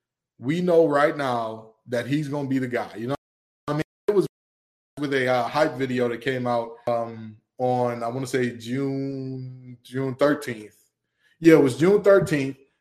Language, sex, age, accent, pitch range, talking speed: English, male, 20-39, American, 125-150 Hz, 175 wpm